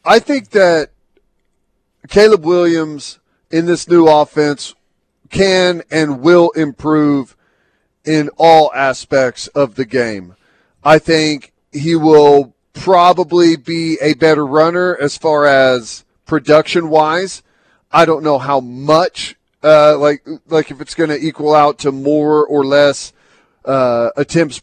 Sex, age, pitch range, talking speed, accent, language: male, 40-59, 140-165 Hz, 125 wpm, American, English